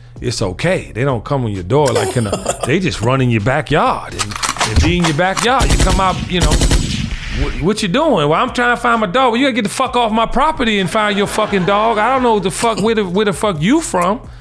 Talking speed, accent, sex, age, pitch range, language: 270 wpm, American, male, 40-59, 120-180 Hz, English